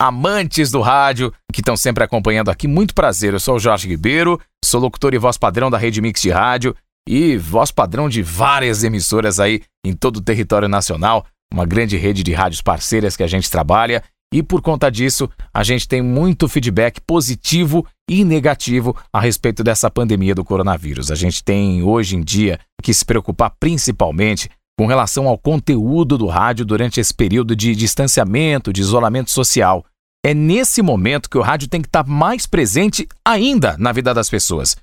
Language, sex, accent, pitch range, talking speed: Portuguese, male, Brazilian, 110-160 Hz, 180 wpm